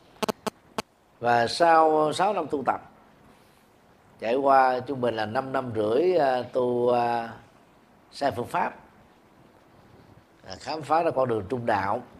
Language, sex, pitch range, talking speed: Vietnamese, male, 110-145 Hz, 125 wpm